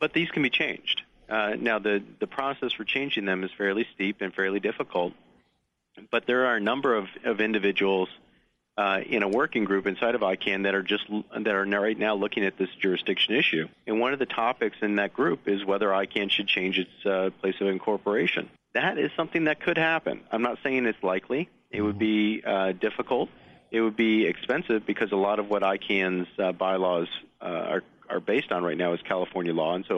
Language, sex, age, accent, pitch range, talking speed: English, male, 40-59, American, 95-115 Hz, 210 wpm